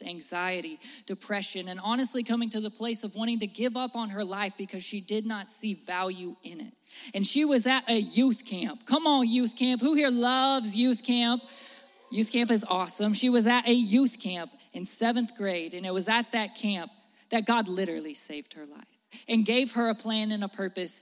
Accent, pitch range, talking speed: American, 195-240 Hz, 210 wpm